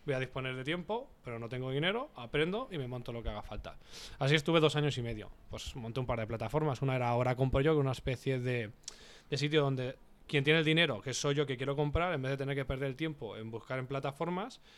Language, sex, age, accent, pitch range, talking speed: Spanish, male, 20-39, Spanish, 125-155 Hz, 255 wpm